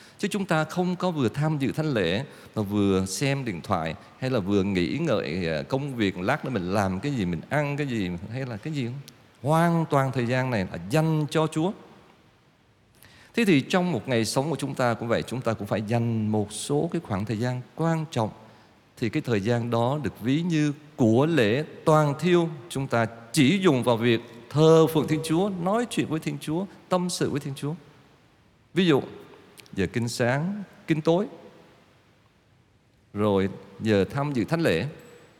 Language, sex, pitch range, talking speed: Vietnamese, male, 115-155 Hz, 195 wpm